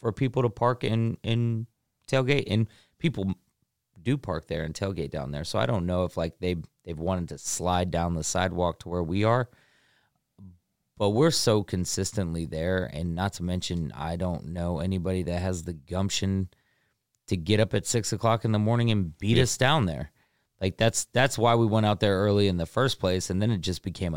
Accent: American